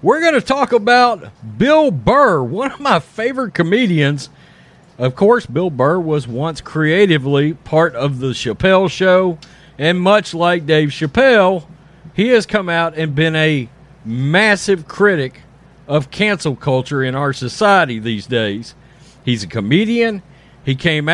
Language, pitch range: English, 140-205 Hz